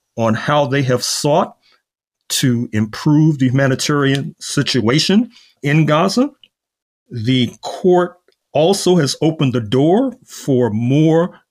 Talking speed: 110 wpm